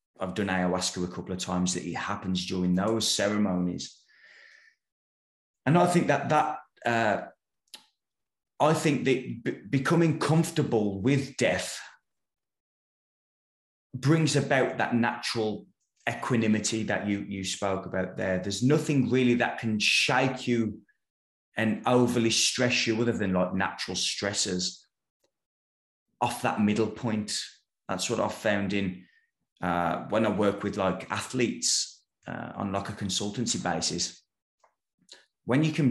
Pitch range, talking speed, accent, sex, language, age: 95-125 Hz, 130 wpm, British, male, English, 20-39